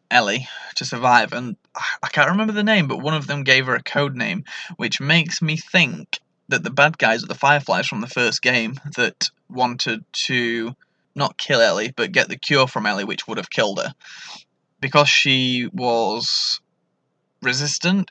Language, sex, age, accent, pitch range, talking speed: English, male, 20-39, British, 125-160 Hz, 180 wpm